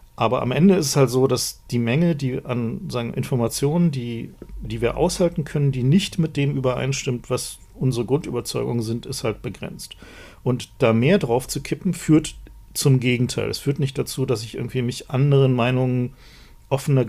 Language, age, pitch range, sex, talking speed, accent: German, 40-59, 115-135 Hz, male, 180 wpm, German